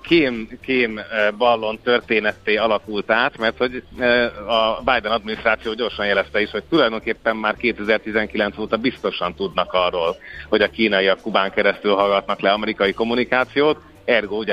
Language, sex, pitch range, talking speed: Hungarian, male, 100-115 Hz, 130 wpm